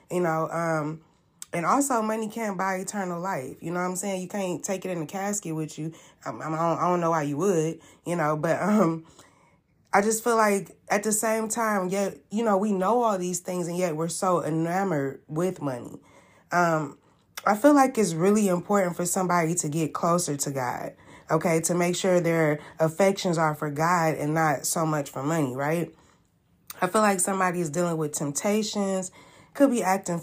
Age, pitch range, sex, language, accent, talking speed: 20-39, 160-195 Hz, female, English, American, 200 wpm